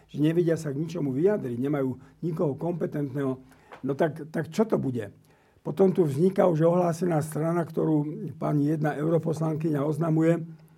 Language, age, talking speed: Slovak, 60-79, 145 wpm